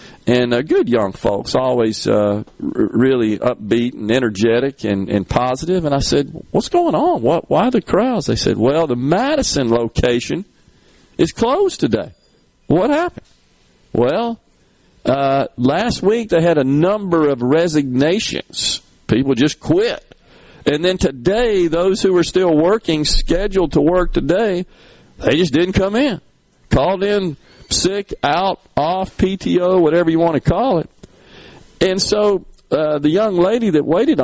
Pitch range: 125-185 Hz